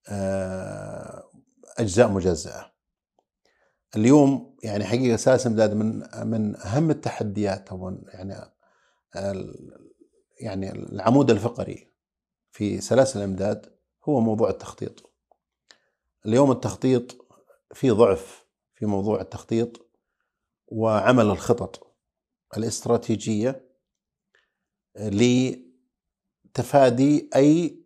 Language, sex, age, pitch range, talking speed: Arabic, male, 50-69, 105-150 Hz, 75 wpm